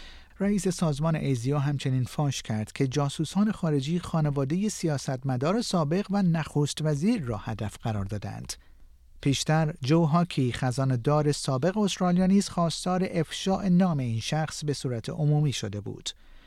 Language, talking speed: Persian, 135 wpm